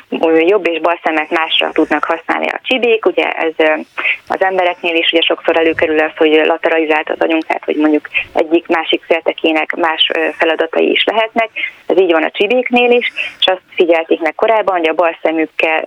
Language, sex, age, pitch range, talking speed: Hungarian, female, 30-49, 155-185 Hz, 165 wpm